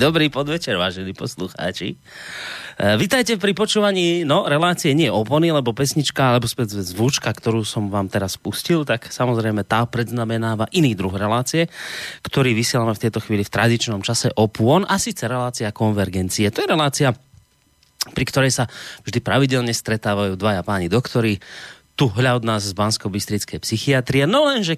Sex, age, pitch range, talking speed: male, 30-49, 100-135 Hz, 150 wpm